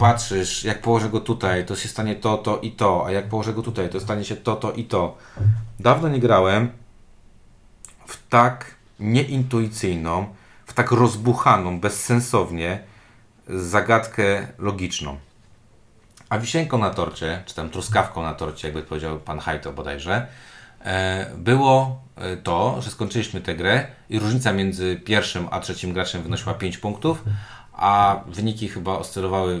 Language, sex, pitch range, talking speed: Polish, male, 90-120 Hz, 140 wpm